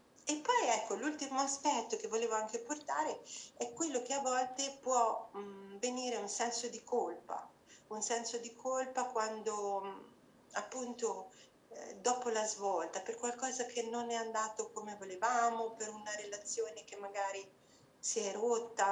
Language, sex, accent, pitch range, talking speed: Italian, female, native, 200-255 Hz, 145 wpm